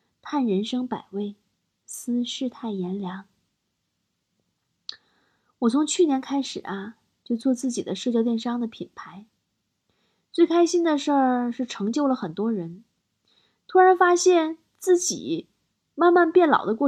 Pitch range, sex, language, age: 215-285 Hz, female, Chinese, 20-39